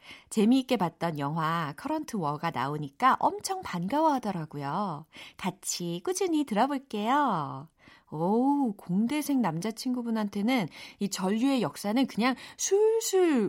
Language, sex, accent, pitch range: Korean, female, native, 170-260 Hz